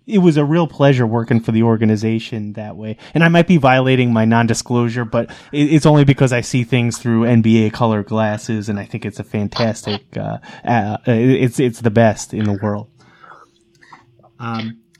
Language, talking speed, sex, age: English, 180 wpm, male, 20-39